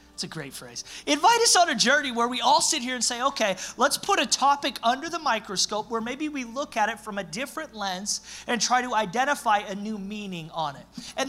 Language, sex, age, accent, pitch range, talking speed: English, male, 30-49, American, 190-260 Hz, 235 wpm